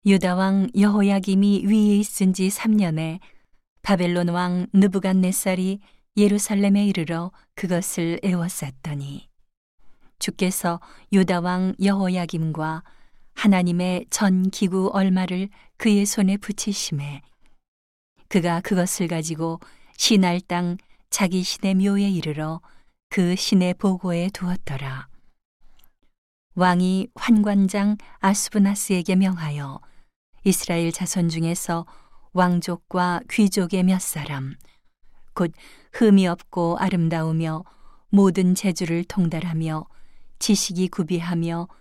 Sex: female